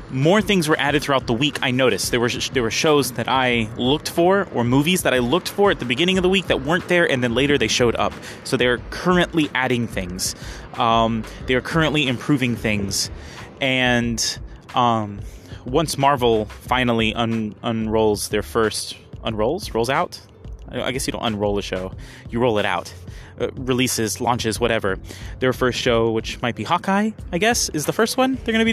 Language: English